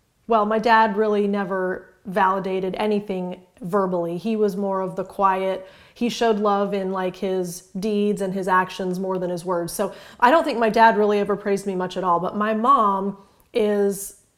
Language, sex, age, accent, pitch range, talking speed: English, female, 30-49, American, 190-225 Hz, 190 wpm